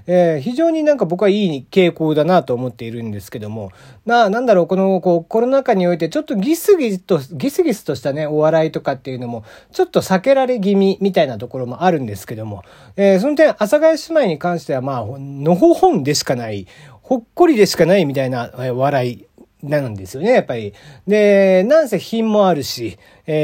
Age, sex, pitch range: 40-59, male, 135-220 Hz